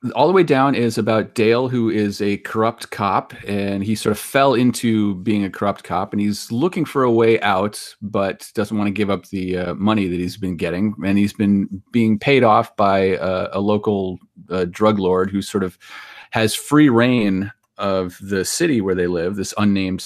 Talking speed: 205 wpm